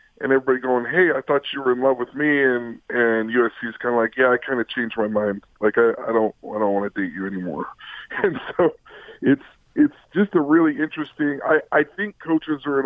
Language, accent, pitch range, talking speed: English, American, 115-150 Hz, 225 wpm